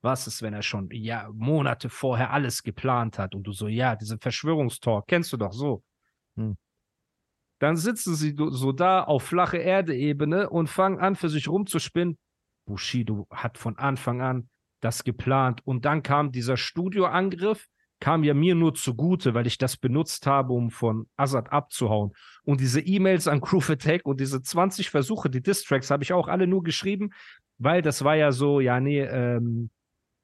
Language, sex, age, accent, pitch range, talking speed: German, male, 40-59, German, 115-165 Hz, 175 wpm